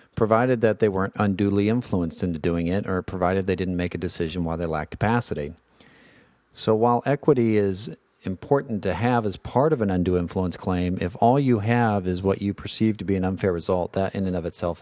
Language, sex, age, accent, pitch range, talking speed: English, male, 40-59, American, 90-115 Hz, 210 wpm